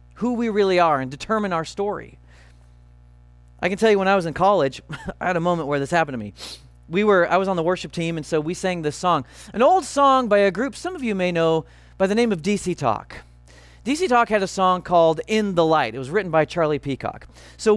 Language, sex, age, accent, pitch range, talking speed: English, male, 40-59, American, 160-220 Hz, 245 wpm